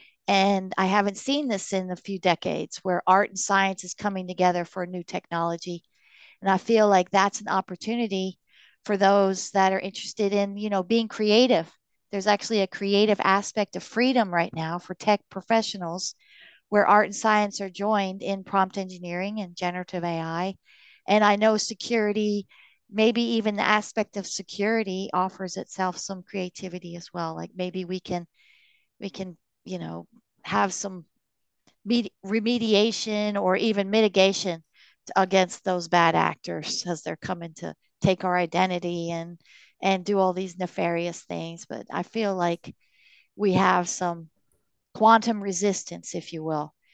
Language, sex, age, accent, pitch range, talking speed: English, female, 40-59, American, 175-210 Hz, 155 wpm